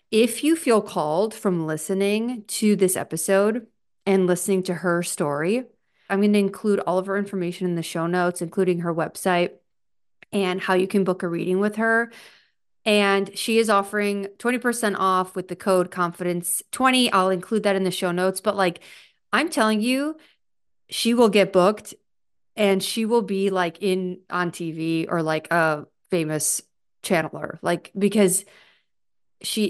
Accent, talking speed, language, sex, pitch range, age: American, 160 wpm, English, female, 180-220 Hz, 30-49